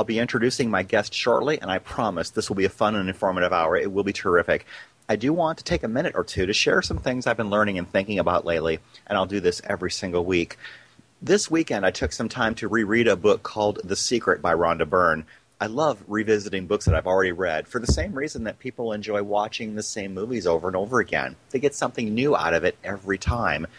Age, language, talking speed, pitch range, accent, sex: 30-49, English, 240 wpm, 95-115 Hz, American, male